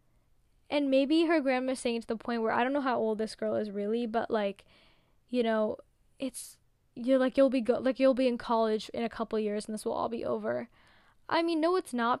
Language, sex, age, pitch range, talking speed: English, female, 10-29, 230-280 Hz, 245 wpm